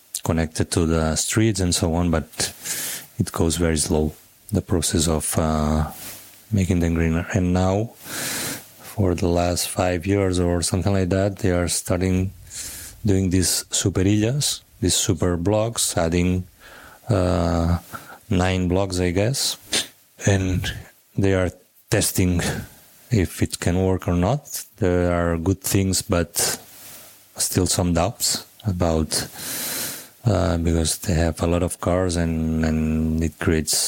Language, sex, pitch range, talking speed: Slovak, male, 85-100 Hz, 135 wpm